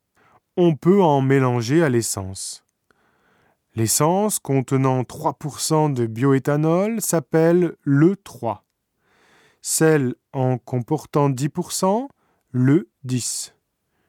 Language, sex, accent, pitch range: Japanese, male, French, 125-165 Hz